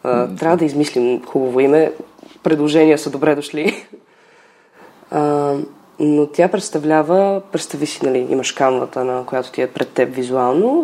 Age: 20-39